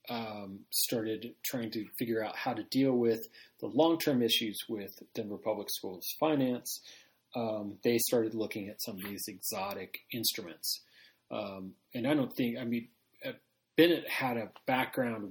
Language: English